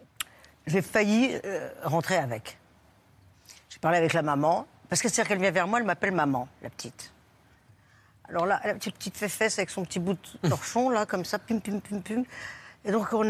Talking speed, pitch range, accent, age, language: 205 wpm, 145-195 Hz, French, 50-69, French